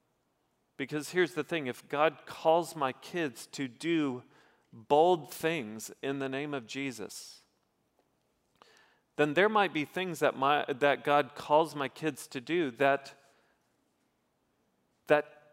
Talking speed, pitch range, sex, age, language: 130 wpm, 125-150 Hz, male, 40-59, English